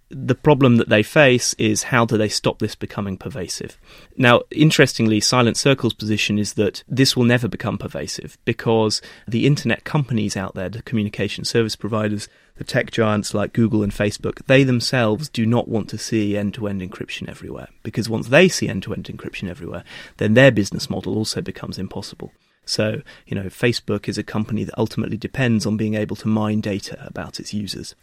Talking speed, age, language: 180 wpm, 30-49, English